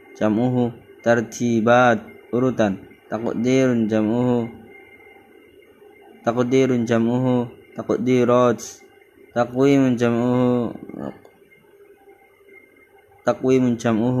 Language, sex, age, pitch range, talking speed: Arabic, male, 20-39, 115-140 Hz, 60 wpm